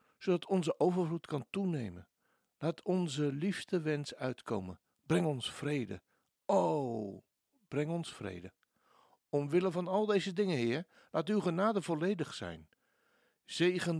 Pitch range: 120-175 Hz